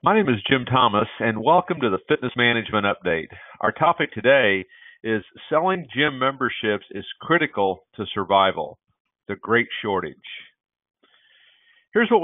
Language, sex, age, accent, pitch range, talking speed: English, male, 50-69, American, 105-135 Hz, 135 wpm